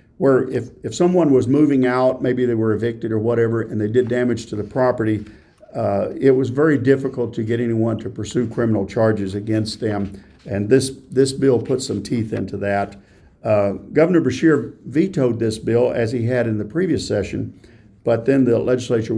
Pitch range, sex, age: 110-130 Hz, male, 50-69